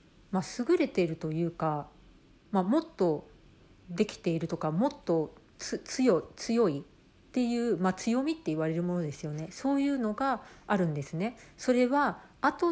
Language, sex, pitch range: Japanese, female, 165-245 Hz